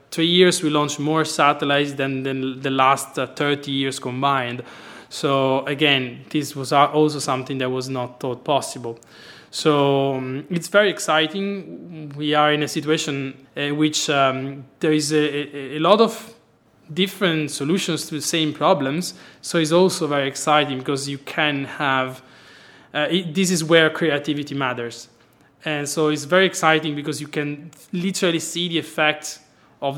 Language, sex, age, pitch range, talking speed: English, male, 20-39, 135-155 Hz, 155 wpm